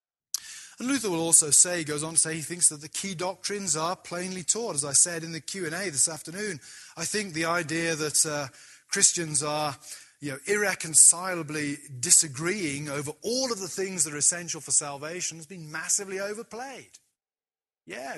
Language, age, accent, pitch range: English, 30-49, British, 140-175 Hz